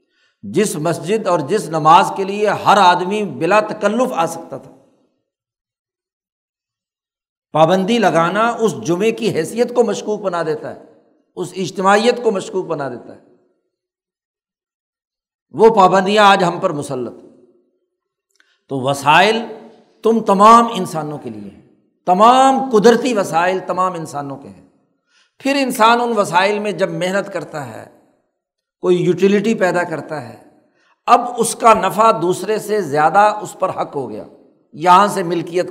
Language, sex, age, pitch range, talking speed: Urdu, male, 60-79, 170-225 Hz, 140 wpm